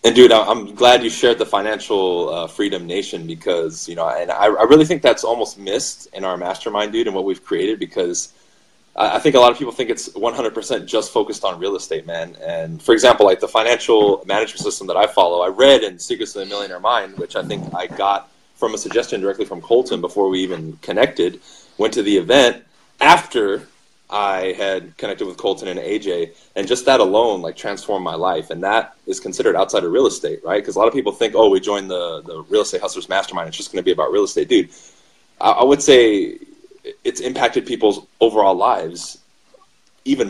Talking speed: 210 wpm